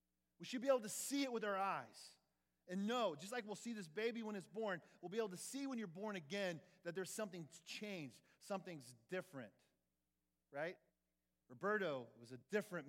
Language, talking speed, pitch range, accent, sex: English, 190 wpm, 130-215 Hz, American, male